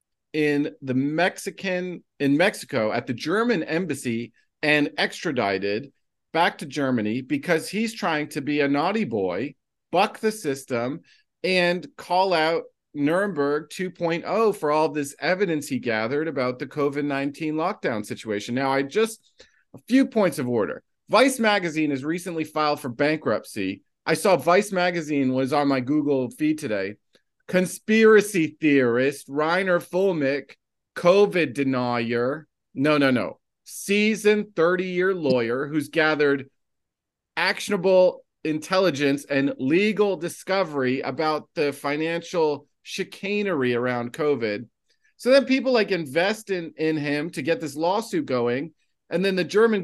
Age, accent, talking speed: 40-59, American, 130 wpm